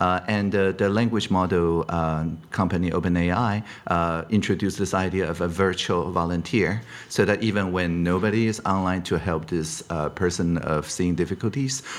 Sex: male